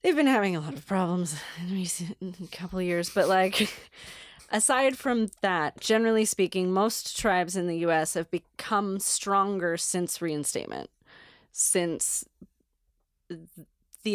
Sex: female